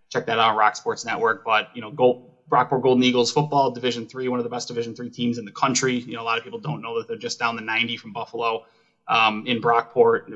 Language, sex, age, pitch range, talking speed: English, male, 20-39, 115-135 Hz, 260 wpm